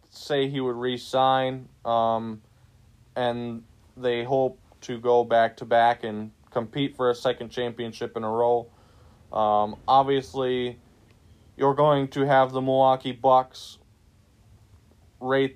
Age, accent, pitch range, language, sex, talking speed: 20-39, American, 110-135 Hz, English, male, 125 wpm